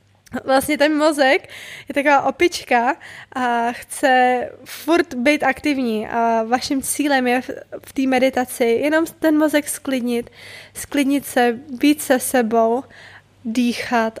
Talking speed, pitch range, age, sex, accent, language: 120 wpm, 240-280 Hz, 20-39, female, native, Czech